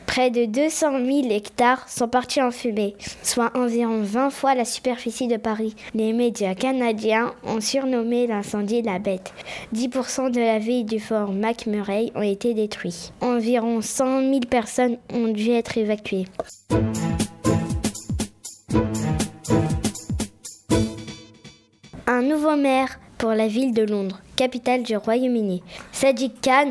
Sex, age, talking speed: female, 20-39, 125 wpm